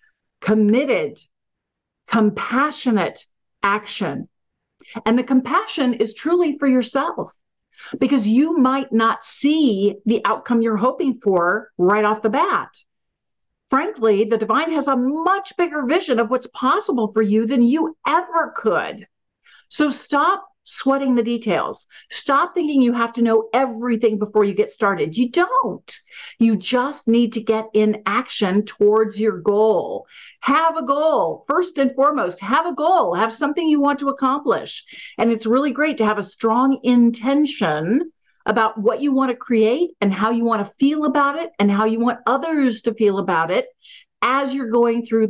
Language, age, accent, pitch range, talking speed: English, 50-69, American, 215-275 Hz, 160 wpm